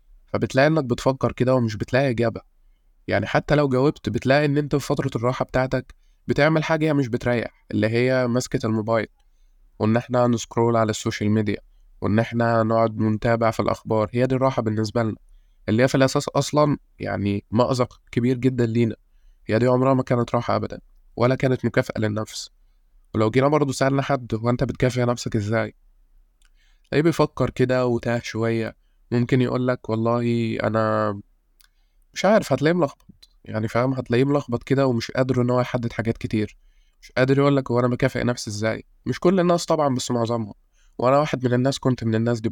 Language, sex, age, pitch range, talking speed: Arabic, male, 20-39, 110-130 Hz, 170 wpm